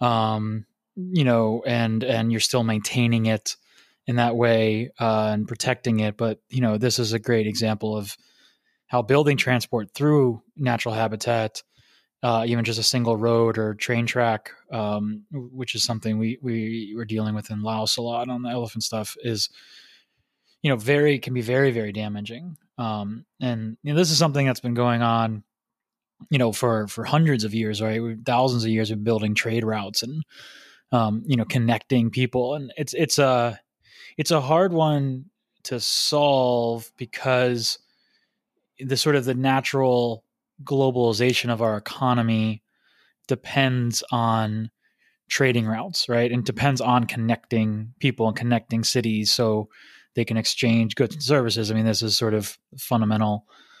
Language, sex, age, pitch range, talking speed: English, male, 20-39, 110-130 Hz, 165 wpm